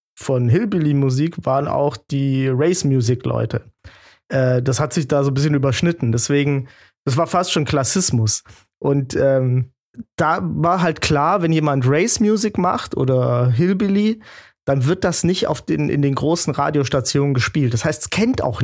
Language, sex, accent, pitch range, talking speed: German, male, German, 135-170 Hz, 160 wpm